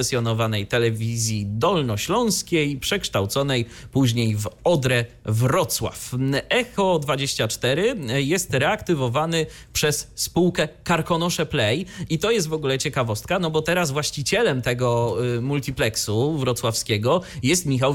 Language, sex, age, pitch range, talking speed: Polish, male, 30-49, 115-155 Hz, 100 wpm